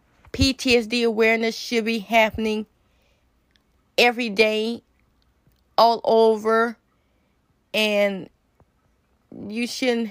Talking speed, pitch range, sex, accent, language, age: 70 wpm, 215-235 Hz, female, American, English, 20-39